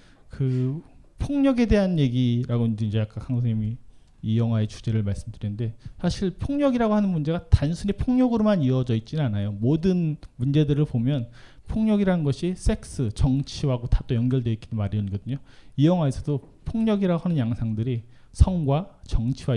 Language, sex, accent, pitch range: Korean, male, native, 110-145 Hz